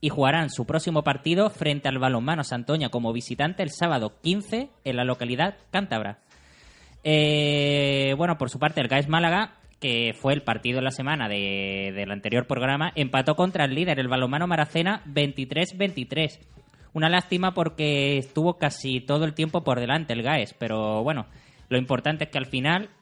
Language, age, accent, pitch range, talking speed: Spanish, 20-39, Spanish, 125-160 Hz, 170 wpm